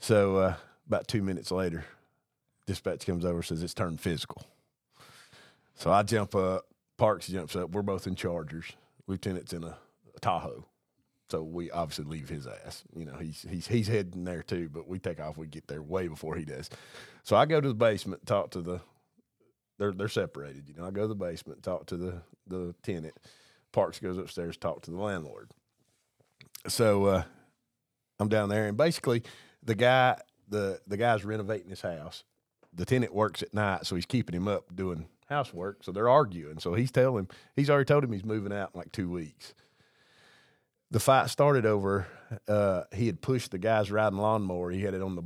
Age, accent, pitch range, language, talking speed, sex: 40-59, American, 85-110 Hz, English, 195 wpm, male